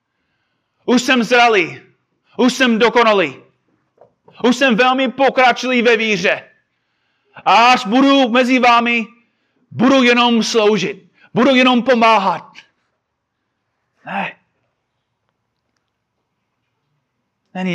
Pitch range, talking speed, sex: 140-230 Hz, 80 wpm, male